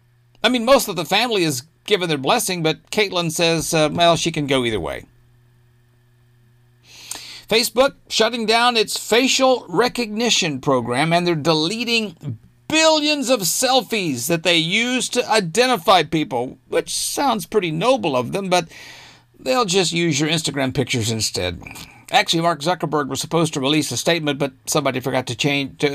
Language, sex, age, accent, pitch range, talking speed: English, male, 50-69, American, 130-190 Hz, 155 wpm